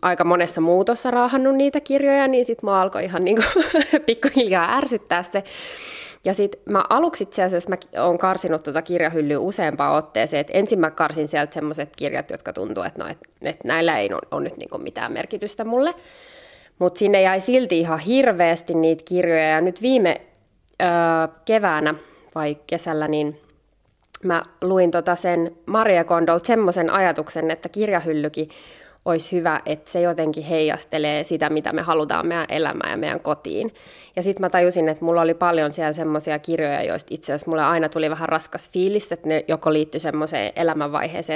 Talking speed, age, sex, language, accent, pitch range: 165 wpm, 20-39, female, Finnish, native, 155-200 Hz